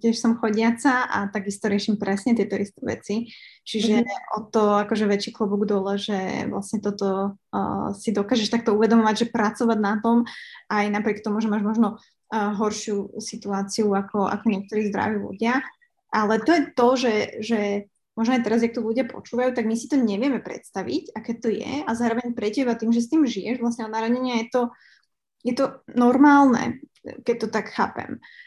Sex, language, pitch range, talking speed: female, Slovak, 210-240 Hz, 175 wpm